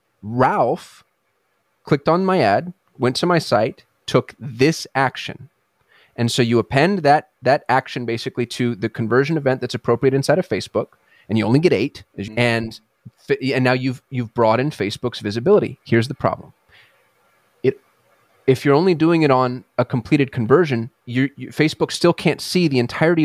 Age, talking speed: 30-49, 165 wpm